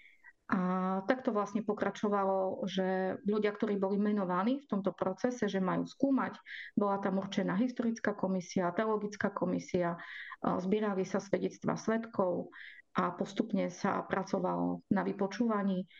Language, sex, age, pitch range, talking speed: Slovak, female, 30-49, 185-210 Hz, 120 wpm